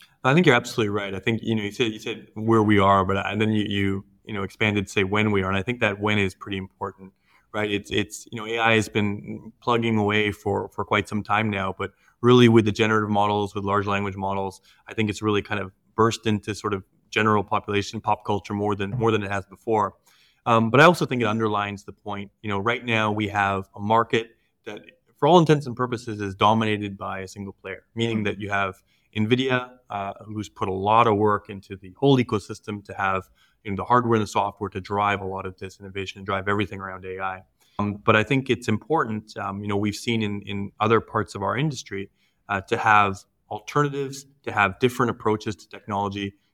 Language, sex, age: English, male, 20-39